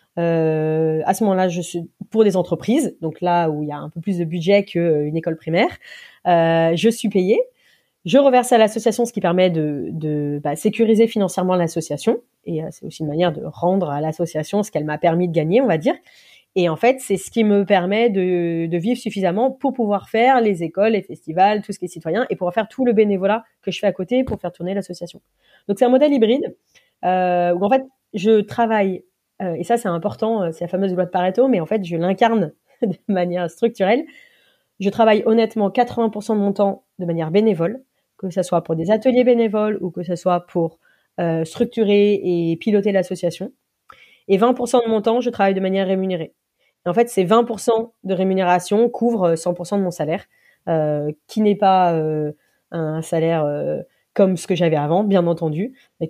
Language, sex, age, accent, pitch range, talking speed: French, female, 30-49, French, 170-220 Hz, 205 wpm